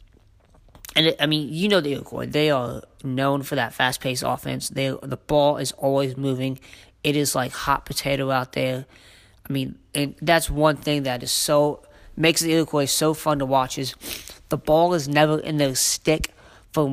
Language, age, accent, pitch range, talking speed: English, 20-39, American, 125-150 Hz, 185 wpm